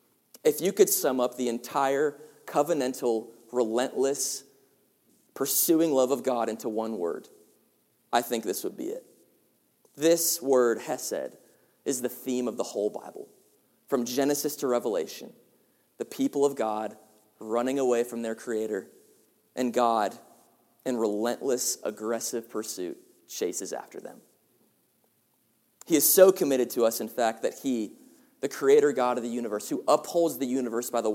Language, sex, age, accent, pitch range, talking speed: English, male, 30-49, American, 115-145 Hz, 145 wpm